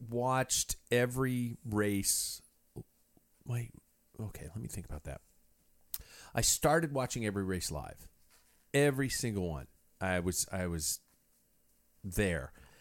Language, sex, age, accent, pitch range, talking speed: English, male, 40-59, American, 85-105 Hz, 110 wpm